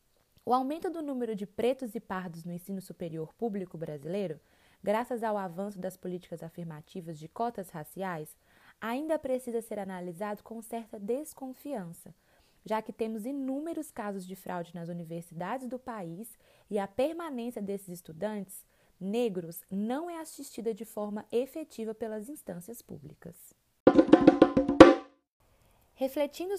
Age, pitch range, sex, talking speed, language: 20-39, 175-245 Hz, female, 125 wpm, Portuguese